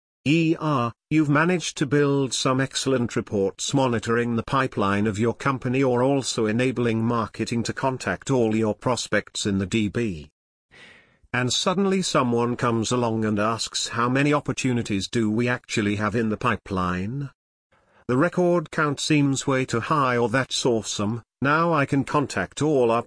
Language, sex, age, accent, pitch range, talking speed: English, male, 50-69, British, 105-135 Hz, 155 wpm